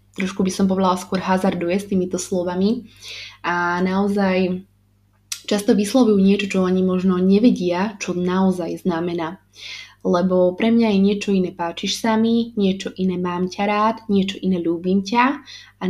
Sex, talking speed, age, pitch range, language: female, 145 wpm, 20-39, 175-200 Hz, Slovak